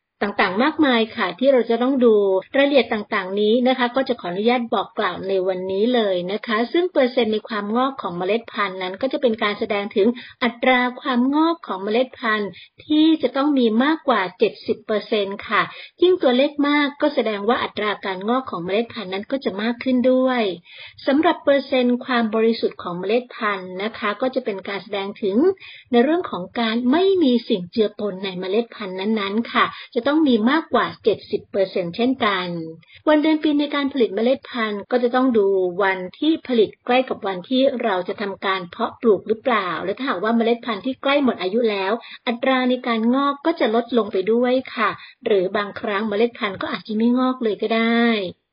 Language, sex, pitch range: English, female, 205-255 Hz